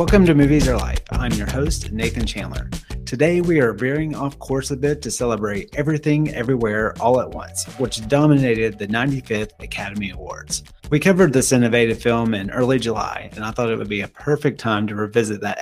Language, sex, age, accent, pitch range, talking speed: English, male, 30-49, American, 105-130 Hz, 195 wpm